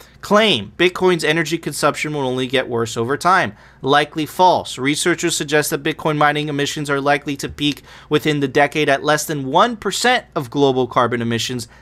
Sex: male